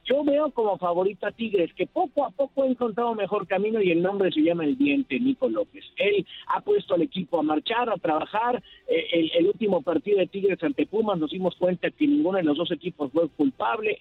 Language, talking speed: Spanish, 215 wpm